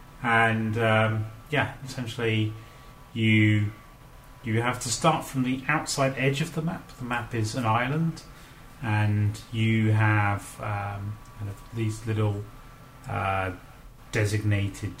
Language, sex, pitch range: English, male, 100-130 Hz